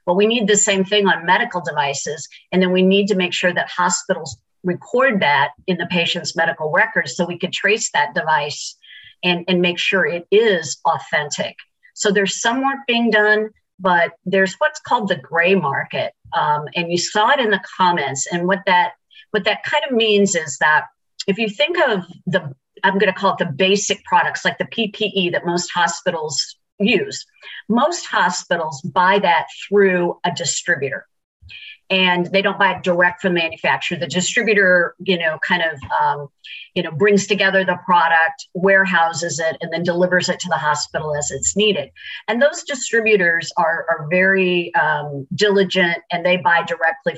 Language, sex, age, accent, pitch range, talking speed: English, female, 50-69, American, 170-205 Hz, 185 wpm